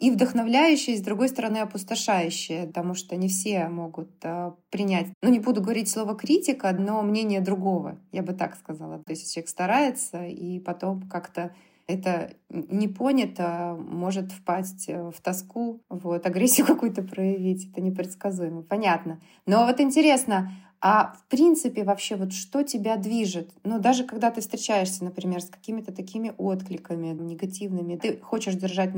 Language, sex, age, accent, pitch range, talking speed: Russian, female, 20-39, native, 175-220 Hz, 150 wpm